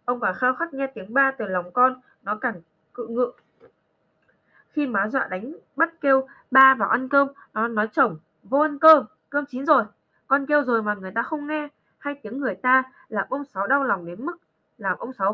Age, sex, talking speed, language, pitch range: 20-39, female, 215 wpm, Vietnamese, 200-285 Hz